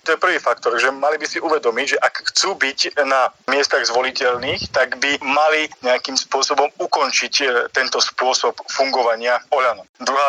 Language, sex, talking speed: Slovak, male, 155 wpm